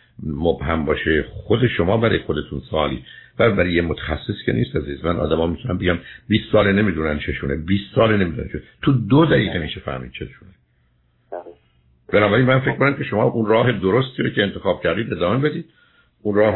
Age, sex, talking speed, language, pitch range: 60-79, male, 190 wpm, Persian, 75-100 Hz